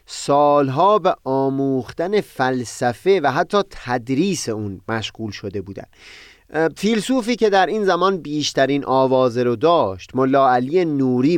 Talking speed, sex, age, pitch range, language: 115 wpm, male, 30-49, 120-155 Hz, Persian